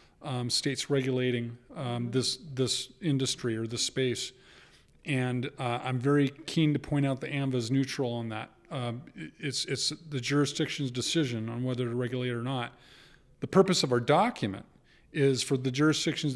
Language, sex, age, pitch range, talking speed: English, male, 40-59, 125-150 Hz, 160 wpm